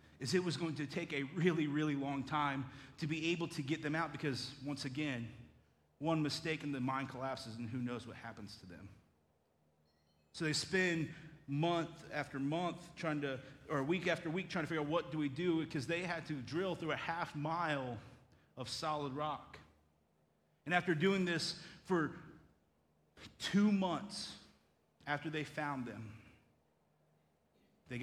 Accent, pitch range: American, 115-165 Hz